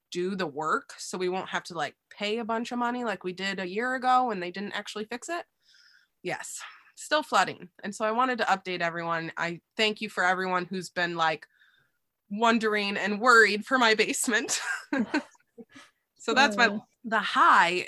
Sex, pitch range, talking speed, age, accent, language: female, 175-225 Hz, 185 wpm, 20-39, American, English